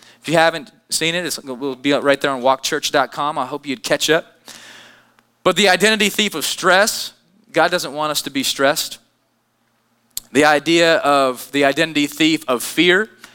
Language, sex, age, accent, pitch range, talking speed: English, male, 20-39, American, 140-195 Hz, 170 wpm